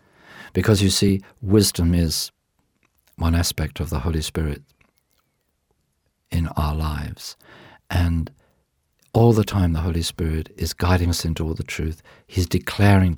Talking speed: 135 wpm